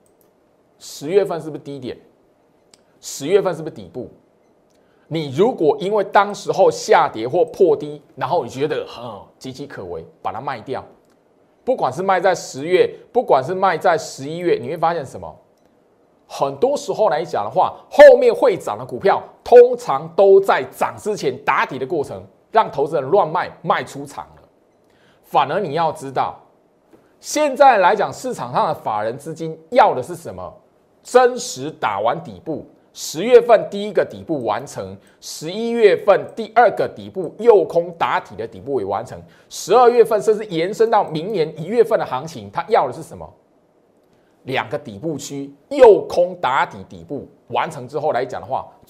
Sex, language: male, Chinese